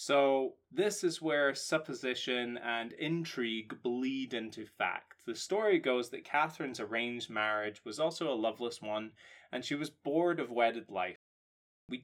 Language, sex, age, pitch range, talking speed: English, male, 20-39, 110-140 Hz, 150 wpm